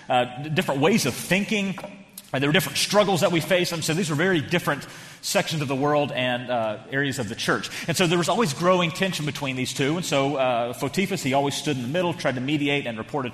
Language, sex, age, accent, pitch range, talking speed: English, male, 30-49, American, 130-175 Hz, 245 wpm